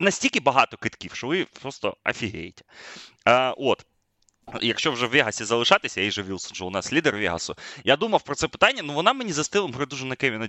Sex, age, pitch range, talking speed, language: male, 20-39, 100-135 Hz, 190 wpm, Ukrainian